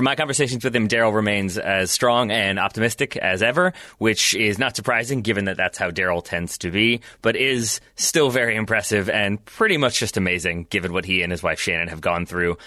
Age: 20-39